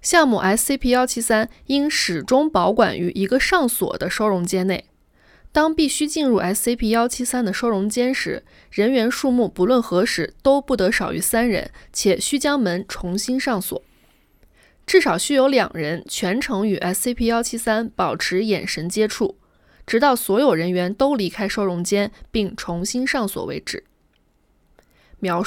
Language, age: Chinese, 20-39